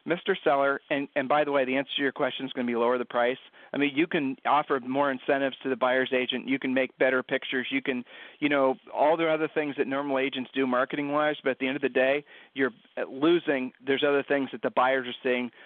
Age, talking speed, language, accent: 40-59, 250 wpm, English, American